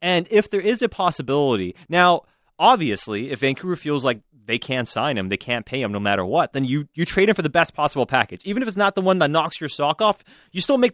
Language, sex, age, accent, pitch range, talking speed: English, male, 30-49, American, 135-195 Hz, 260 wpm